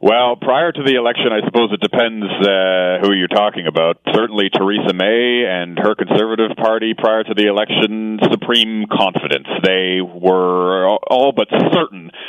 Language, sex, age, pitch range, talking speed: English, male, 40-59, 95-110 Hz, 155 wpm